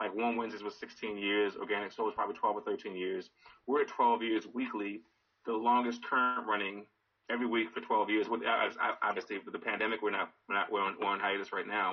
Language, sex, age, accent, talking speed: English, male, 30-49, American, 220 wpm